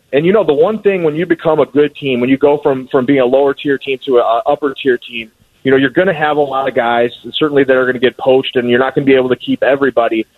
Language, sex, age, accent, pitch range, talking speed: English, male, 30-49, American, 130-150 Hz, 320 wpm